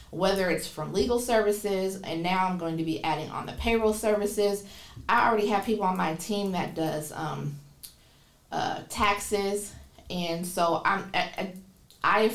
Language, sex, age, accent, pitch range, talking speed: English, female, 40-59, American, 170-210 Hz, 150 wpm